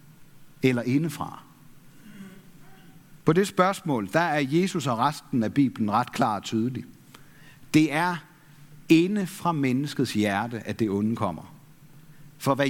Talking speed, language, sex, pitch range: 130 wpm, Danish, male, 140-175 Hz